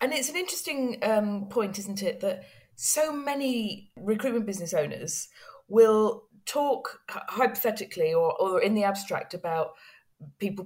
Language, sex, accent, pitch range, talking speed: English, female, British, 185-240 Hz, 140 wpm